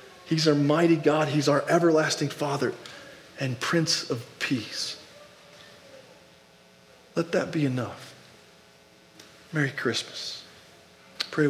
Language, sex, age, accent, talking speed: English, male, 40-59, American, 100 wpm